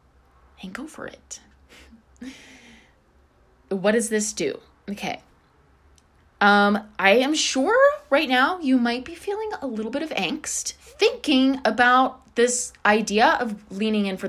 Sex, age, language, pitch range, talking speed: female, 20-39, English, 190-270 Hz, 135 wpm